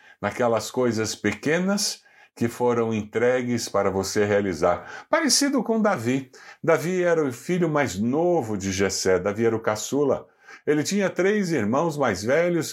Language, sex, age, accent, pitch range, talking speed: Portuguese, male, 50-69, Brazilian, 110-150 Hz, 140 wpm